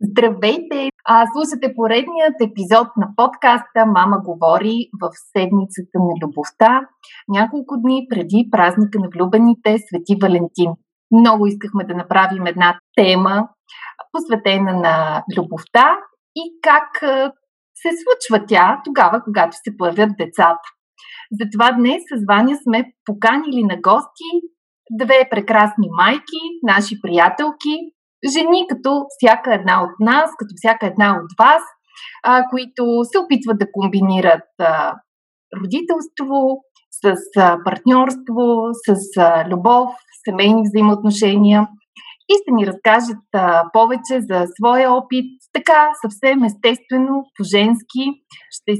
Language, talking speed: Bulgarian, 115 wpm